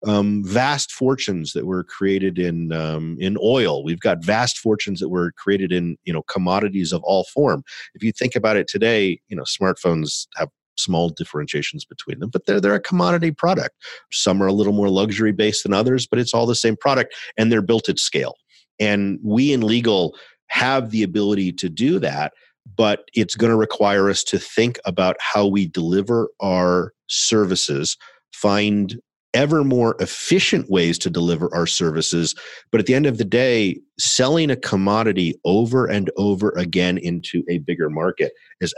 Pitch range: 90-115 Hz